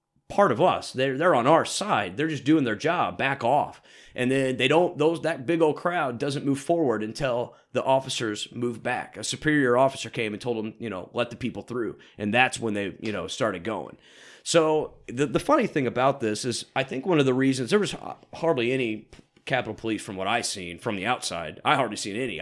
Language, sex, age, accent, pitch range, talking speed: English, male, 30-49, American, 105-130 Hz, 225 wpm